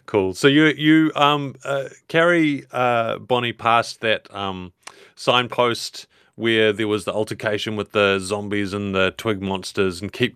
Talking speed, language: 155 wpm, English